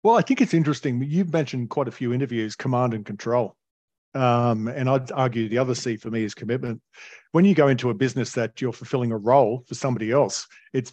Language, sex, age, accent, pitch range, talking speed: English, male, 40-59, Australian, 115-135 Hz, 220 wpm